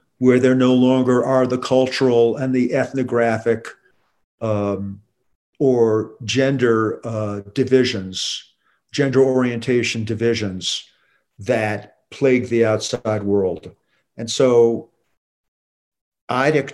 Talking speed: 95 wpm